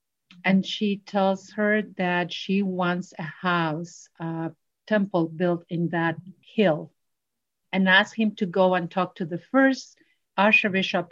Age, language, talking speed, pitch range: 50-69, English, 140 wpm, 175-215 Hz